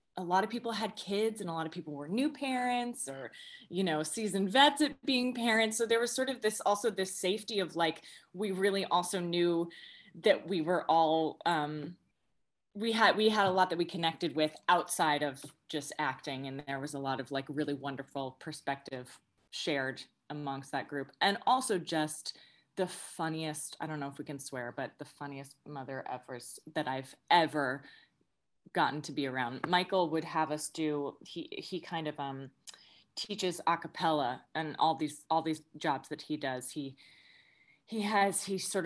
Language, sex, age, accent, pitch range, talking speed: English, female, 20-39, American, 150-195 Hz, 185 wpm